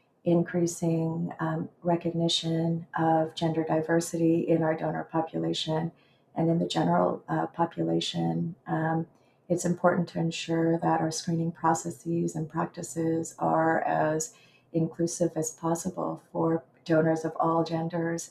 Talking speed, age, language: 120 wpm, 40-59, English